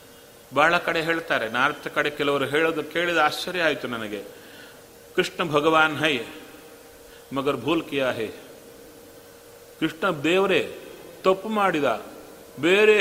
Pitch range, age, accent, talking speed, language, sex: 155-220 Hz, 40-59, native, 100 wpm, Kannada, male